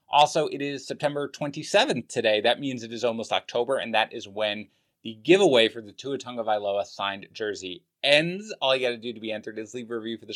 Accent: American